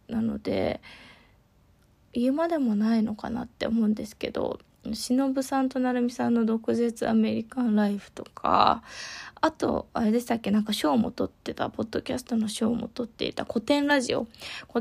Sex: female